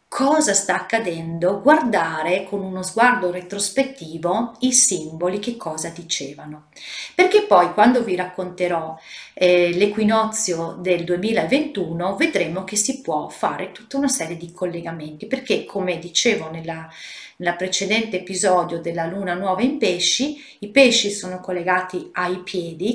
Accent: native